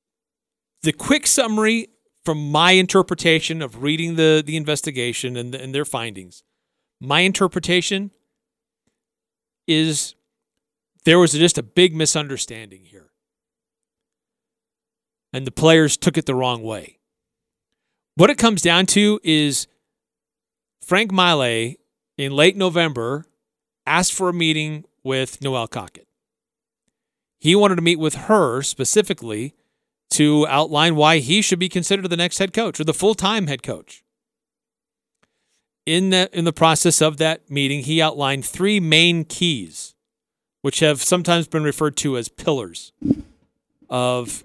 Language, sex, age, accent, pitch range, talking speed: English, male, 40-59, American, 145-200 Hz, 130 wpm